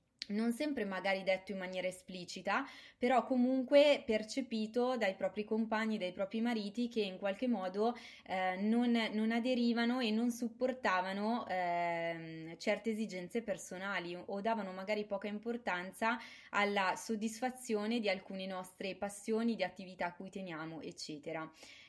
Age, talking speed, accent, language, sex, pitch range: 20-39, 130 wpm, native, Italian, female, 185-225 Hz